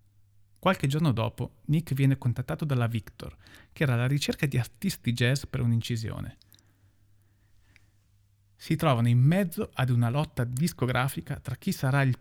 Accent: native